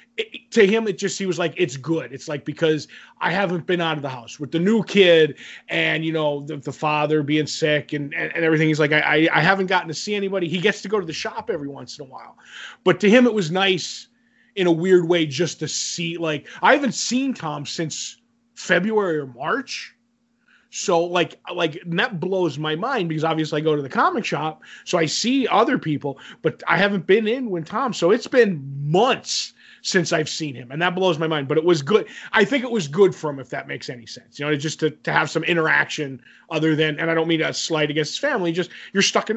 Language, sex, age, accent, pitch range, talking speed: English, male, 20-39, American, 150-190 Hz, 240 wpm